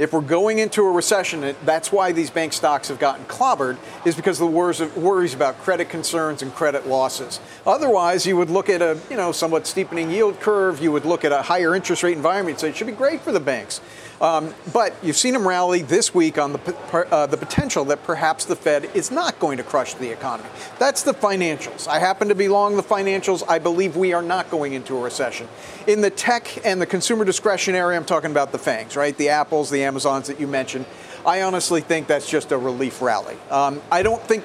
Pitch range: 155-195 Hz